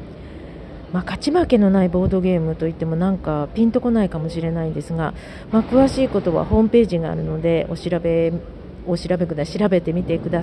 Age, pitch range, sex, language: 40-59, 160-210 Hz, female, Japanese